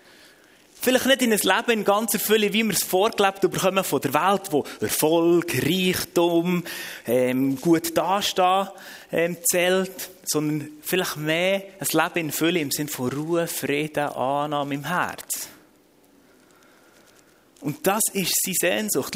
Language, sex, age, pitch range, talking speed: German, male, 30-49, 160-210 Hz, 140 wpm